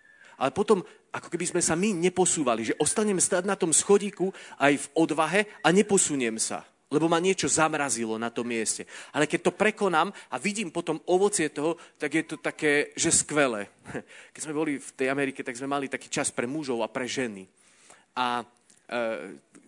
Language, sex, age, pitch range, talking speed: Slovak, male, 30-49, 115-155 Hz, 185 wpm